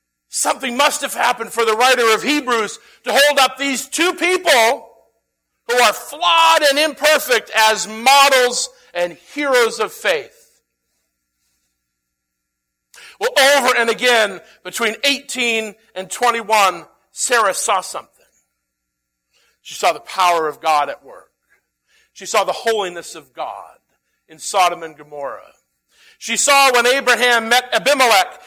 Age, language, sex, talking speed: 50-69, English, male, 130 wpm